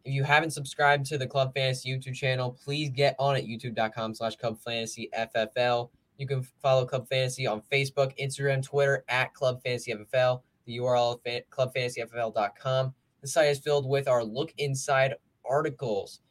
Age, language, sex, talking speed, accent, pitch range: 10-29, English, male, 160 wpm, American, 120-140 Hz